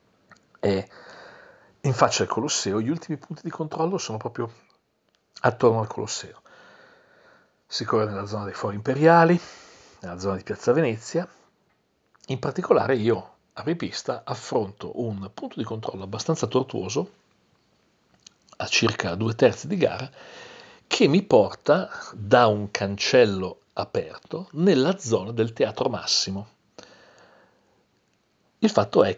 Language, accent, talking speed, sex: Italian, native, 120 wpm, male